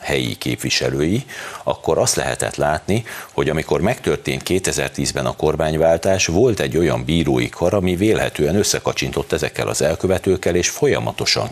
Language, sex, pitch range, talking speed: Hungarian, male, 65-95 Hz, 130 wpm